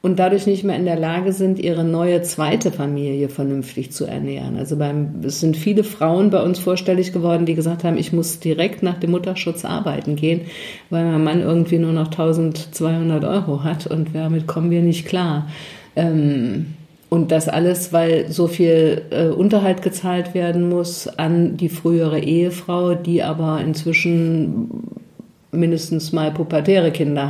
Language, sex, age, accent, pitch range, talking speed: German, female, 50-69, German, 155-175 Hz, 155 wpm